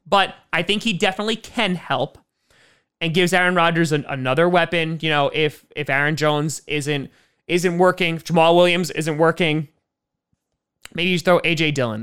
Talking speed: 170 wpm